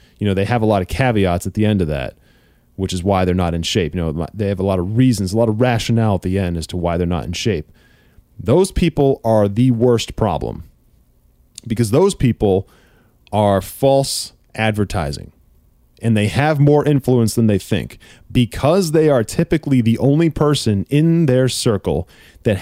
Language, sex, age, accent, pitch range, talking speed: English, male, 30-49, American, 95-130 Hz, 195 wpm